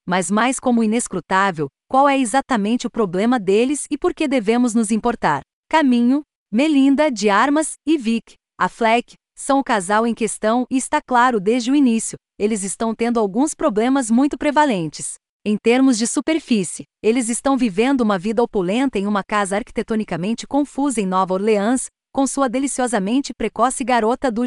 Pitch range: 210-265 Hz